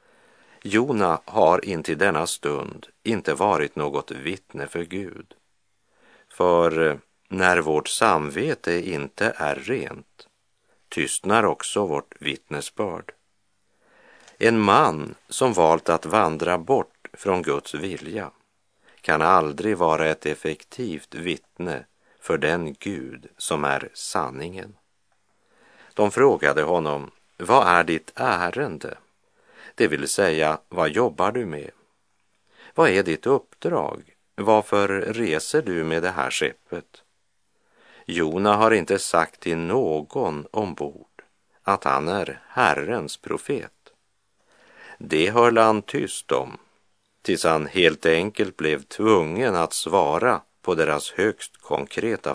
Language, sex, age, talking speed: Swedish, male, 50-69, 115 wpm